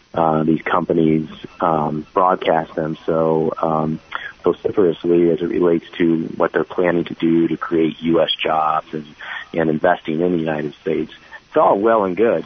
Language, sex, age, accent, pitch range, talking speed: English, male, 30-49, American, 80-90 Hz, 165 wpm